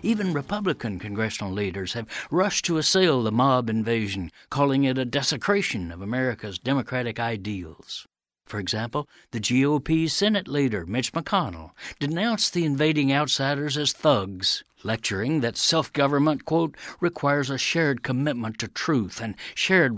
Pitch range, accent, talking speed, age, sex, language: 115-160 Hz, American, 135 wpm, 60-79, male, English